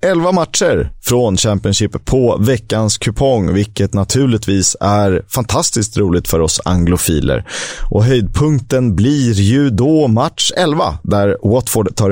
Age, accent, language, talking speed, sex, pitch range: 30-49, native, Swedish, 125 wpm, male, 95-125 Hz